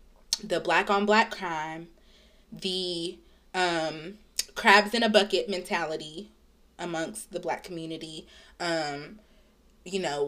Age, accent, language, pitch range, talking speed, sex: 20-39, American, English, 175-210 Hz, 110 wpm, female